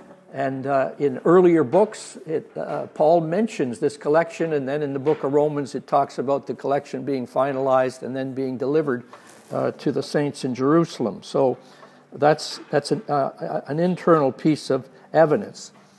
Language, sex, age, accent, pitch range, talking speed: English, male, 60-79, American, 135-165 Hz, 170 wpm